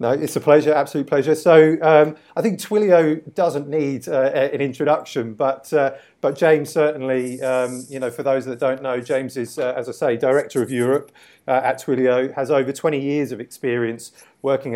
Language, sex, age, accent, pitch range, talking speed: English, male, 30-49, British, 125-140 Hz, 195 wpm